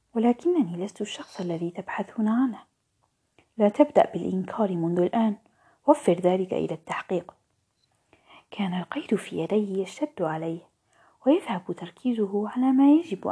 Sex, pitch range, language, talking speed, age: female, 185-265 Hz, Arabic, 115 wpm, 30-49